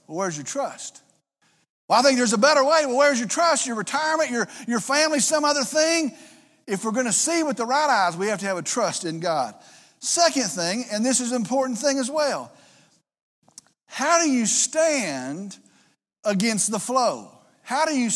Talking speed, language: 200 wpm, English